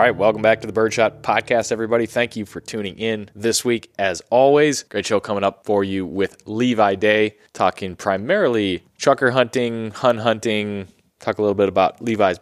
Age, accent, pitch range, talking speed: 20-39, American, 95-115 Hz, 190 wpm